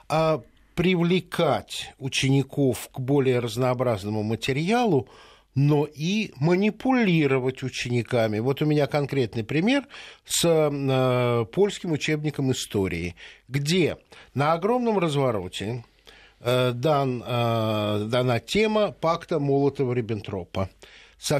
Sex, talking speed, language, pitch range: male, 85 wpm, Russian, 120-185 Hz